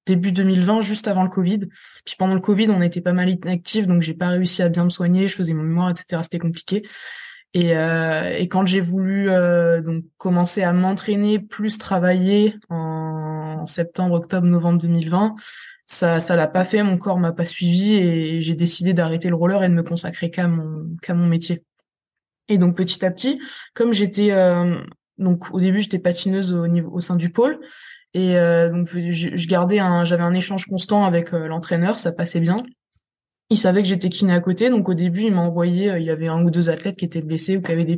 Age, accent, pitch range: 20-39, French, 170-200 Hz